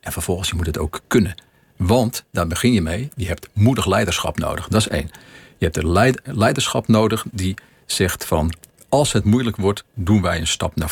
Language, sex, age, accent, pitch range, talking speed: Dutch, male, 50-69, Dutch, 90-115 Hz, 200 wpm